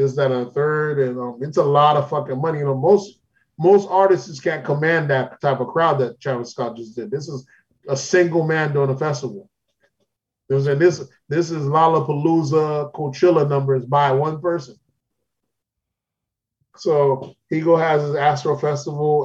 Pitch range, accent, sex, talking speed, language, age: 135-165 Hz, American, male, 165 wpm, English, 20-39